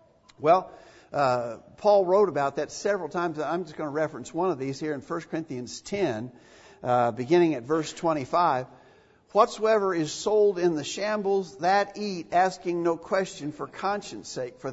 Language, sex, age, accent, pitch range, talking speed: English, male, 50-69, American, 155-215 Hz, 165 wpm